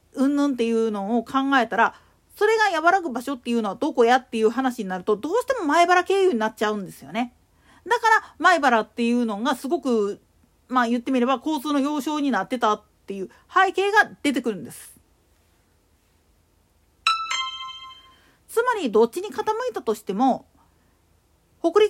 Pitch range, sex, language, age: 235-360 Hz, female, Japanese, 40-59